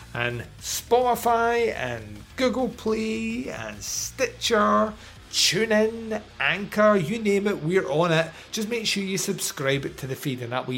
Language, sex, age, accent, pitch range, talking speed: English, male, 30-49, British, 125-185 Hz, 145 wpm